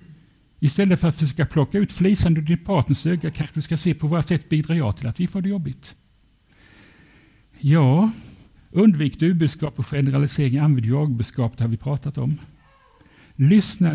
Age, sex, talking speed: 60-79, male, 160 wpm